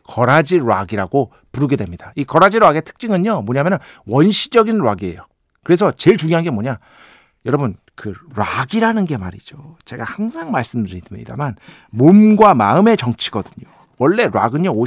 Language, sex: Korean, male